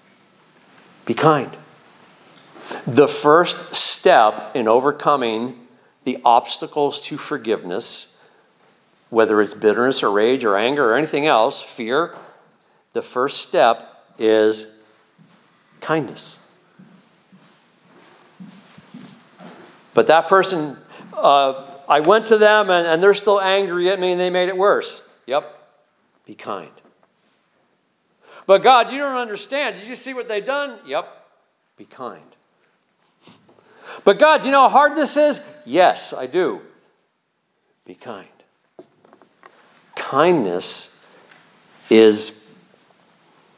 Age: 50-69